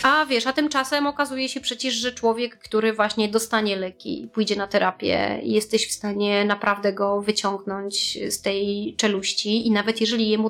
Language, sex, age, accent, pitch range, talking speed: Polish, female, 30-49, native, 200-225 Hz, 165 wpm